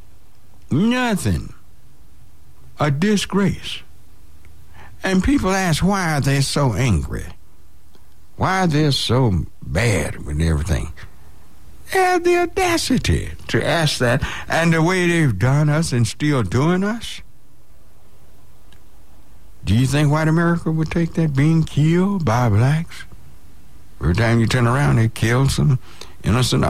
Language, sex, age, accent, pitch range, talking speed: English, male, 60-79, American, 85-140 Hz, 125 wpm